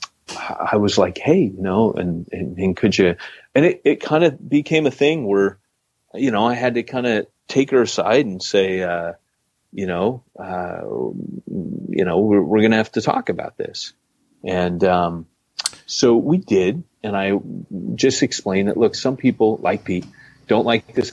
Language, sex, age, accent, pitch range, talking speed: English, male, 30-49, American, 95-130 Hz, 185 wpm